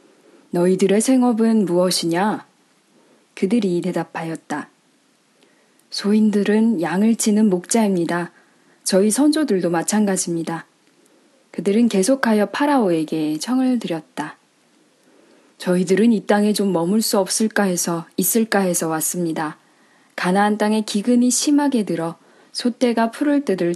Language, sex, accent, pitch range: Korean, female, native, 175-245 Hz